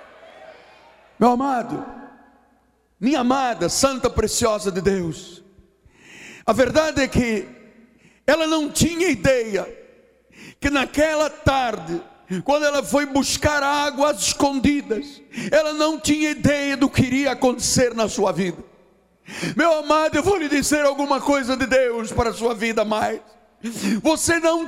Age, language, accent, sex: 60-79, Portuguese, Brazilian, male